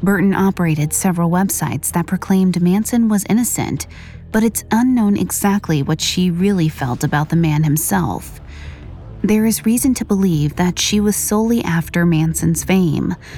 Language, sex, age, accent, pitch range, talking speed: English, female, 30-49, American, 165-215 Hz, 150 wpm